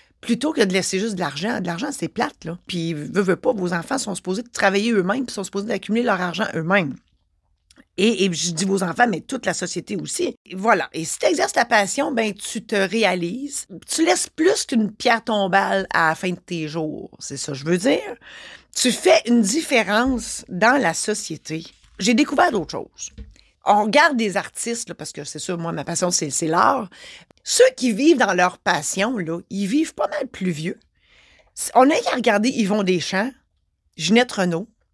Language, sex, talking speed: French, female, 200 wpm